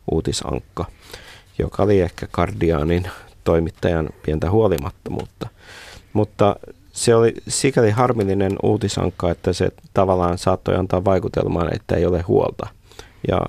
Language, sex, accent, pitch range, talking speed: Finnish, male, native, 90-105 Hz, 110 wpm